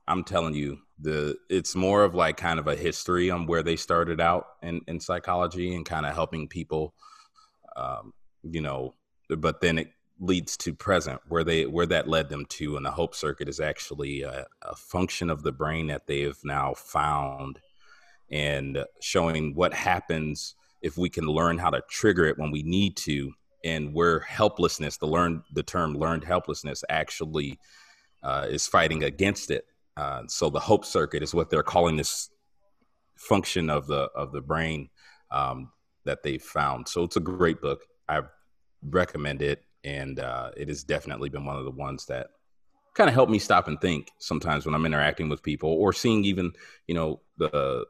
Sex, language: male, English